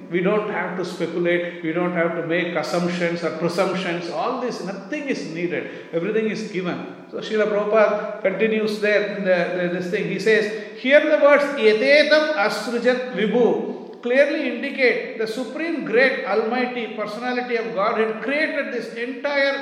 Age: 50-69